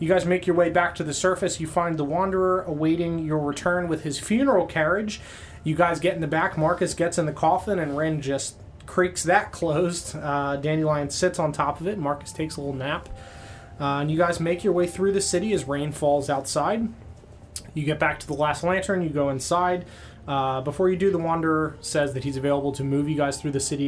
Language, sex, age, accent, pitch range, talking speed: English, male, 30-49, American, 135-170 Hz, 225 wpm